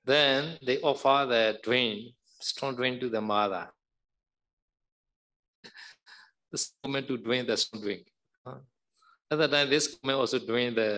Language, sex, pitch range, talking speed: Vietnamese, male, 110-135 Hz, 140 wpm